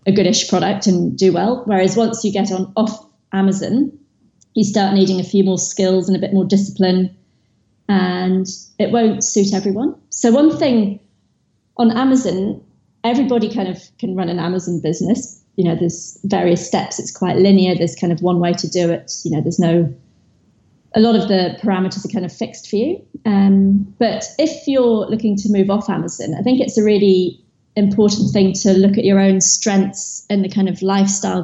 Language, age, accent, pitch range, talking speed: English, 30-49, British, 180-210 Hz, 195 wpm